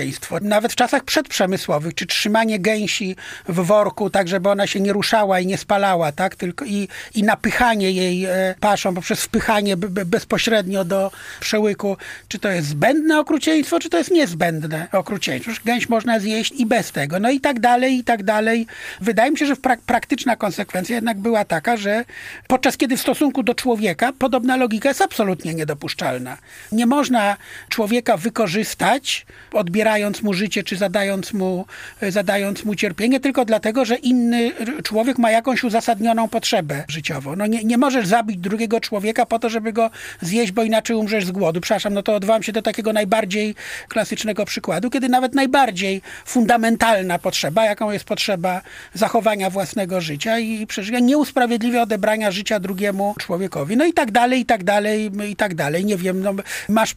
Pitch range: 195-235 Hz